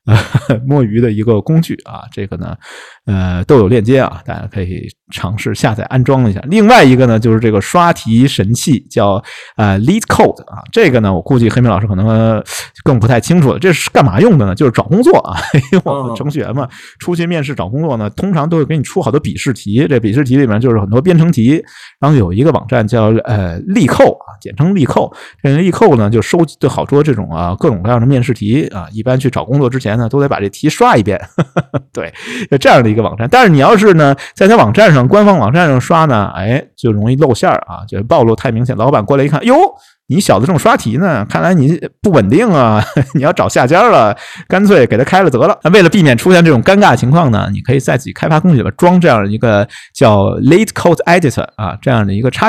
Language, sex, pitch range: Chinese, male, 110-150 Hz